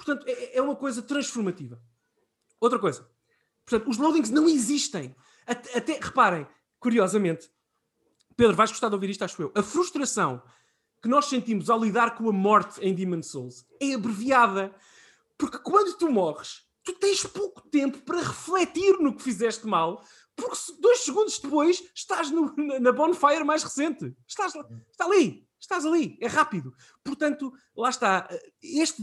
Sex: male